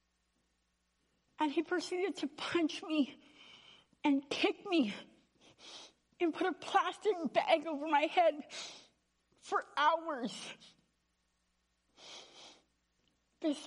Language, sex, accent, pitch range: English, female, American, 245-305 Hz